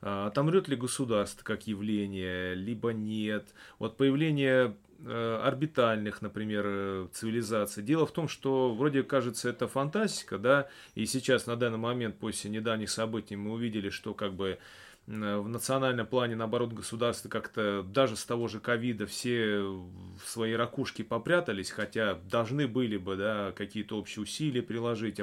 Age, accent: 30-49, native